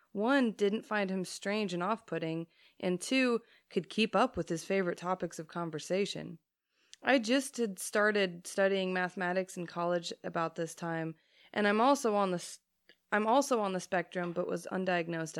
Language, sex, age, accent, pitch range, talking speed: English, female, 20-39, American, 175-240 Hz, 165 wpm